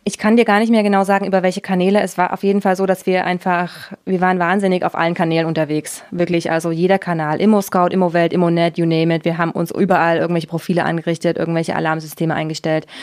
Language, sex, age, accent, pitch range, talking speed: German, female, 20-39, German, 170-210 Hz, 215 wpm